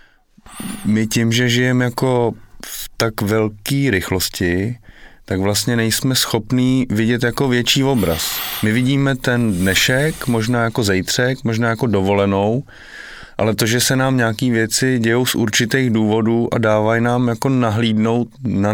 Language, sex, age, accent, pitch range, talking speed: Czech, male, 30-49, native, 105-130 Hz, 140 wpm